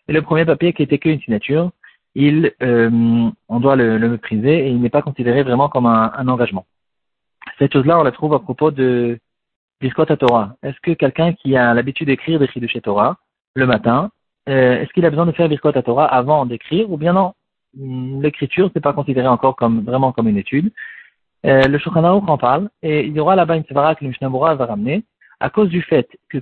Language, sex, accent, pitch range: French, male, French, 125-165 Hz